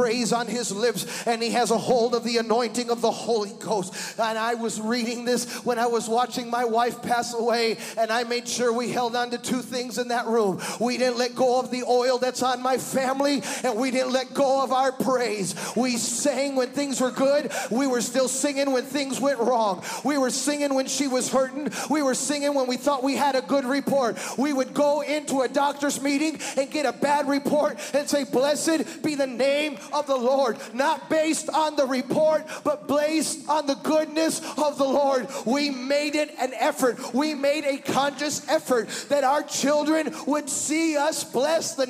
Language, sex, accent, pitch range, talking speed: English, male, American, 245-310 Hz, 210 wpm